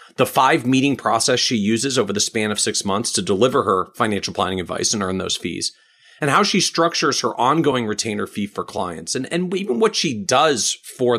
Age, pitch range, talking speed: 40-59, 110-155 Hz, 210 wpm